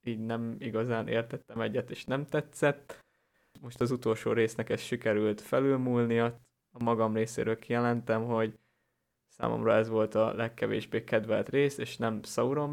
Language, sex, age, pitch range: Hungarian, male, 20-39, 110-120 Hz